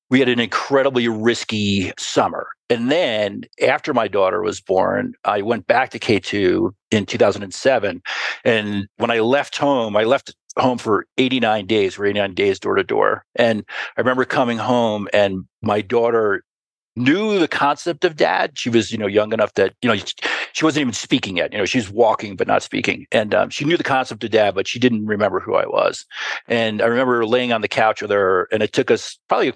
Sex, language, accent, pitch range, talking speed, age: male, English, American, 110-145 Hz, 200 wpm, 50-69